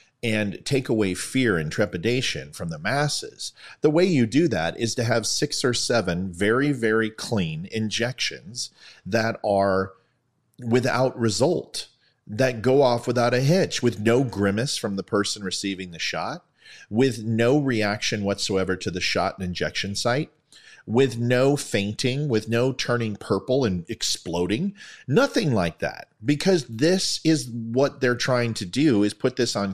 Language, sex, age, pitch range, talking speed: English, male, 40-59, 100-130 Hz, 155 wpm